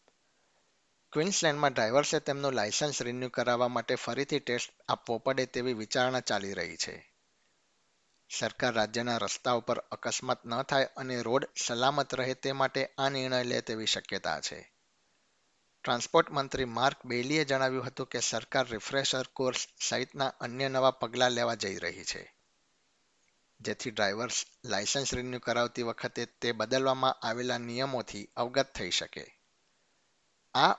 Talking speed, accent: 105 wpm, native